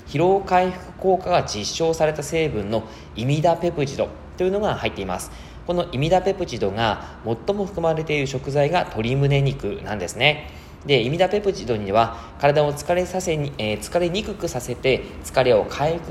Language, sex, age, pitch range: Japanese, male, 20-39, 110-165 Hz